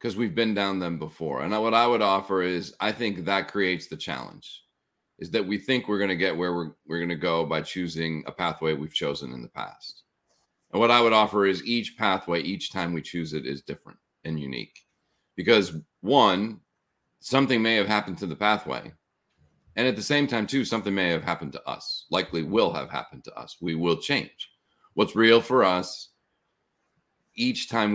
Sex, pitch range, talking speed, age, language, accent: male, 85-115 Hz, 200 wpm, 40-59, English, American